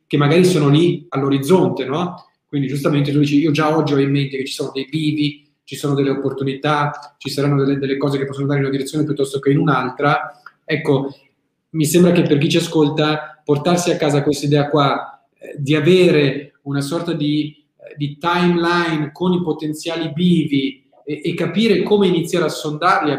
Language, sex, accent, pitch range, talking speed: Italian, male, native, 135-160 Hz, 190 wpm